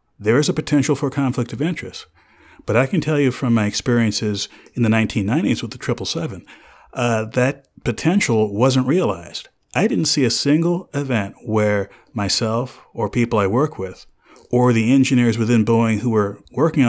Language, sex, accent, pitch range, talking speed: English, male, American, 105-130 Hz, 170 wpm